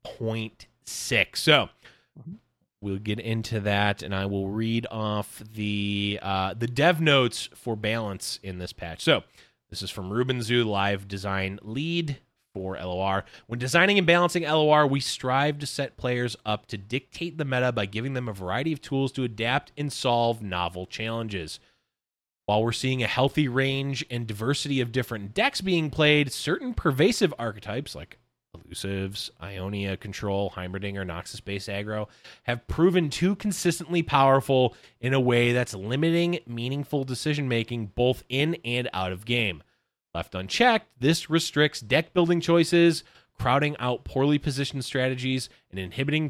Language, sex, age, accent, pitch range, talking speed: English, male, 20-39, American, 105-145 Hz, 150 wpm